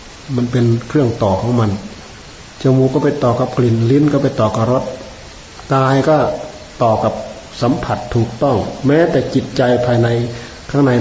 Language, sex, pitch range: Thai, male, 110-140 Hz